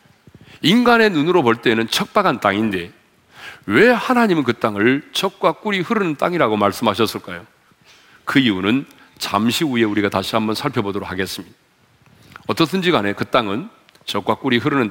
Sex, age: male, 40-59